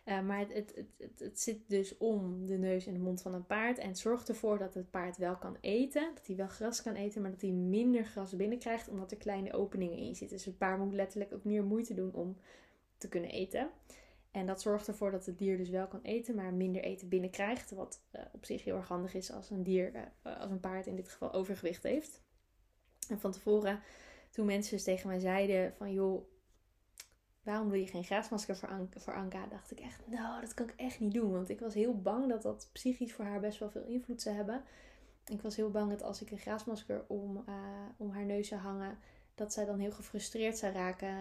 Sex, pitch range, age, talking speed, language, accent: female, 190-215 Hz, 20-39, 235 wpm, Dutch, Dutch